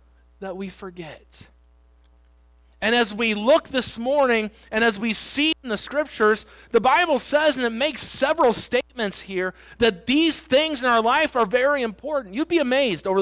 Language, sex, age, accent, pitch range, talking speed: English, male, 40-59, American, 175-255 Hz, 175 wpm